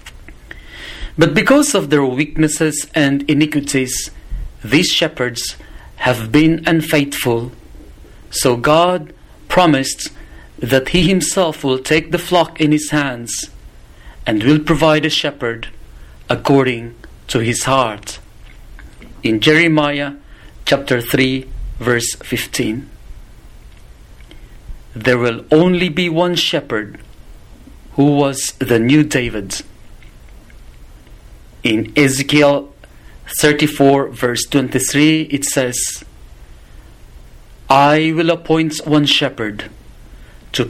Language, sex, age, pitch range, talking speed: English, male, 40-59, 115-155 Hz, 95 wpm